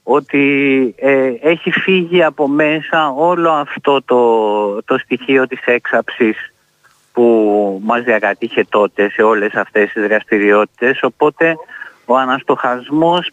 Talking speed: 110 wpm